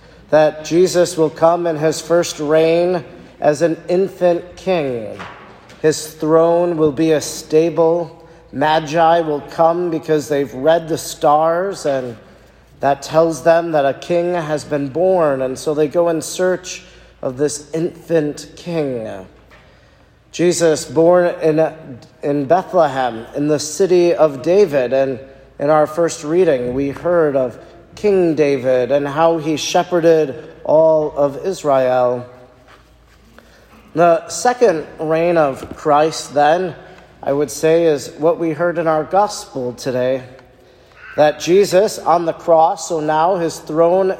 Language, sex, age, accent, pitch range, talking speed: English, male, 40-59, American, 145-170 Hz, 135 wpm